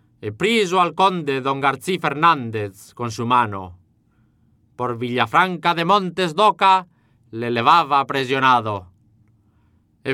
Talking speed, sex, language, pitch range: 105 wpm, male, English, 110-170 Hz